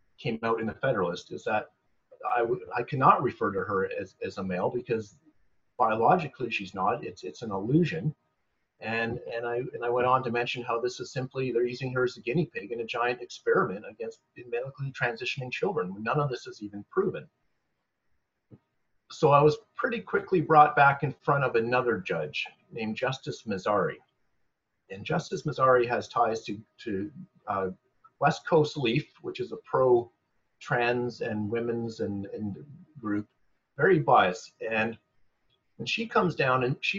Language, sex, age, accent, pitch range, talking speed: English, male, 40-59, American, 115-180 Hz, 170 wpm